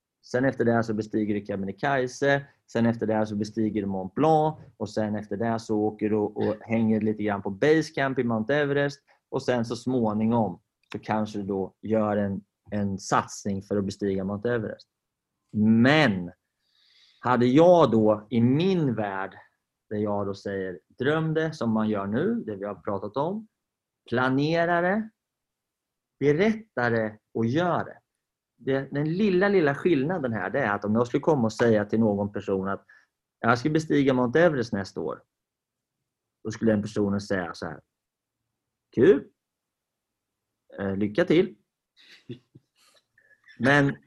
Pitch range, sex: 105-140 Hz, male